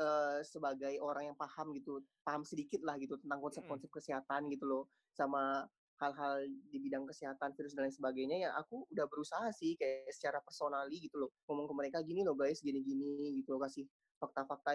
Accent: native